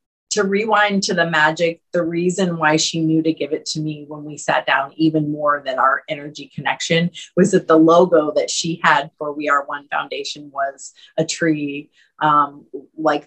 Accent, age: American, 30-49